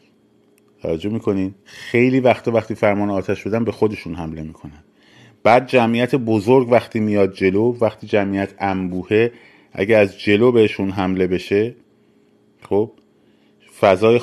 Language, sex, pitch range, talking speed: Persian, male, 95-115 Hz, 120 wpm